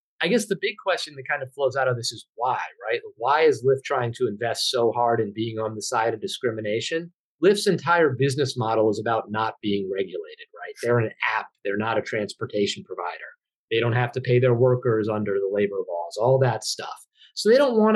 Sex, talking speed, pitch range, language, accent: male, 220 wpm, 115-155 Hz, English, American